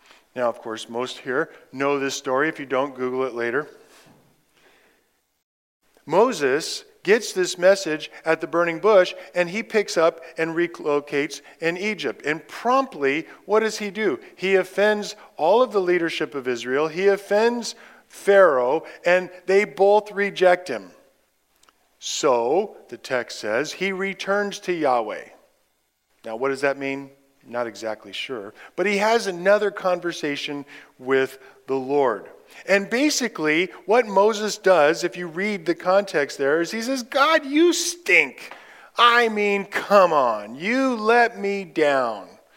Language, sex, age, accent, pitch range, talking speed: English, male, 50-69, American, 155-210 Hz, 140 wpm